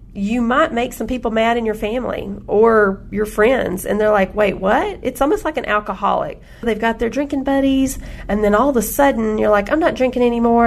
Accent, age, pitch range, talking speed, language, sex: American, 40-59, 205-250 Hz, 220 wpm, English, female